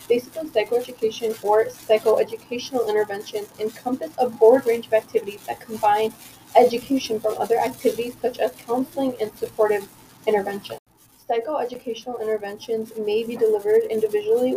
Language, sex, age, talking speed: English, female, 20-39, 120 wpm